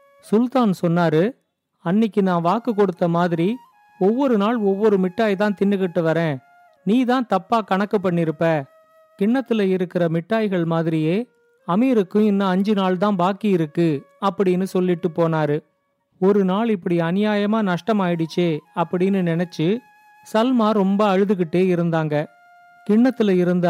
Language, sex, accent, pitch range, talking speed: Tamil, male, native, 175-225 Hz, 115 wpm